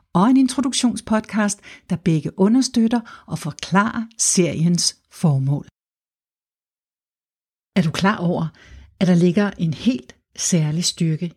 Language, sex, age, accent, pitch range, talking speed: Danish, female, 60-79, native, 165-215 Hz, 110 wpm